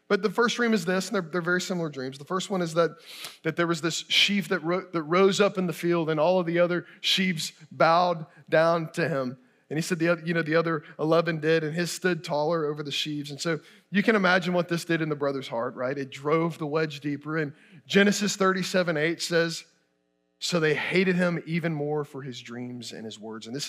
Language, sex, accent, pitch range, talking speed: English, male, American, 145-185 Hz, 240 wpm